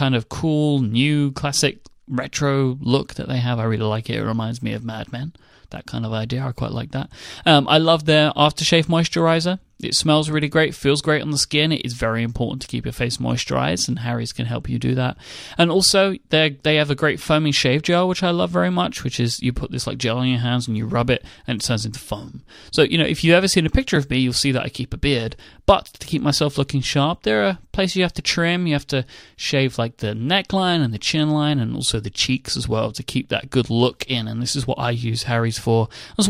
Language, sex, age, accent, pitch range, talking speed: English, male, 30-49, British, 120-155 Hz, 255 wpm